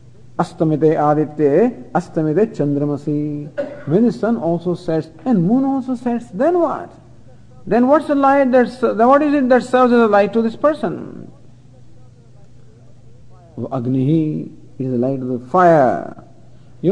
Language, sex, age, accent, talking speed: English, male, 50-69, Indian, 135 wpm